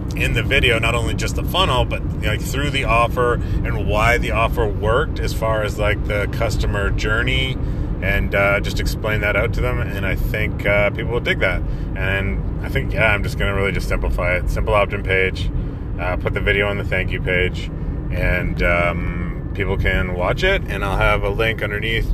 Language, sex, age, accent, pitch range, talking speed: English, male, 30-49, American, 95-115 Hz, 210 wpm